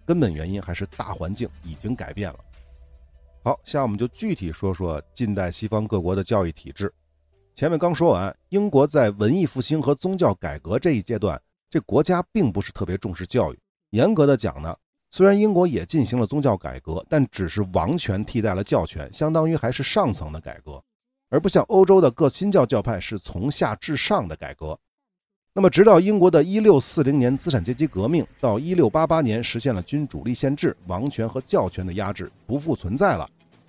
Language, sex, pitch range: Chinese, male, 95-150 Hz